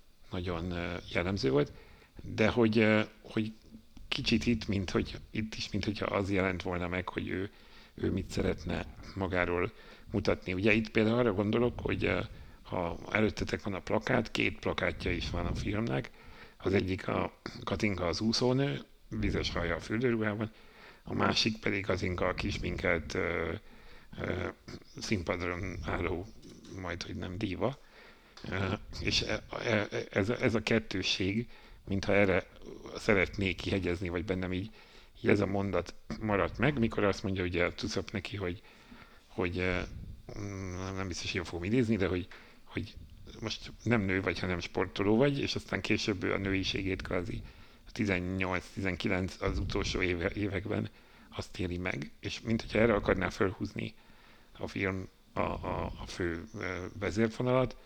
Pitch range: 90-110 Hz